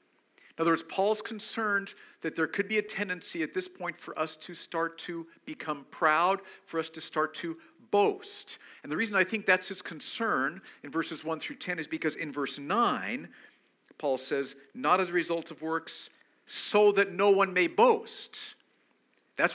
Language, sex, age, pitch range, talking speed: English, male, 50-69, 155-210 Hz, 185 wpm